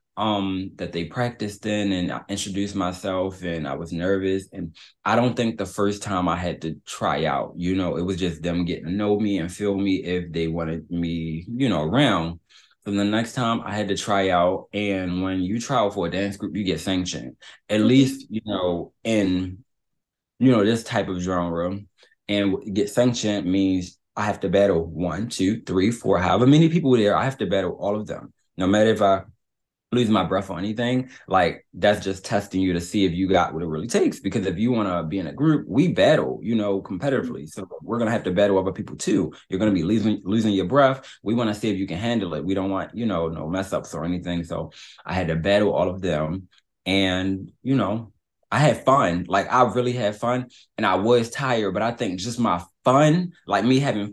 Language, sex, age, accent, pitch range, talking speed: English, male, 20-39, American, 90-115 Hz, 230 wpm